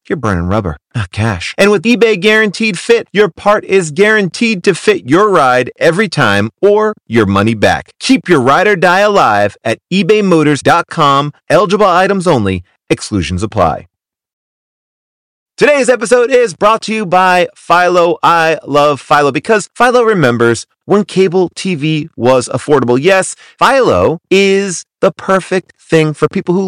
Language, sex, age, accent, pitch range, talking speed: English, male, 30-49, American, 145-210 Hz, 145 wpm